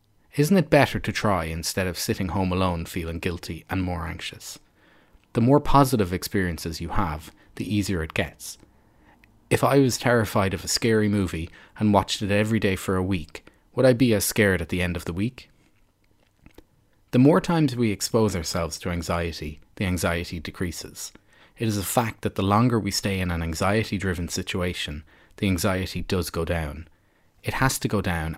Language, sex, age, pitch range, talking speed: English, male, 30-49, 85-110 Hz, 180 wpm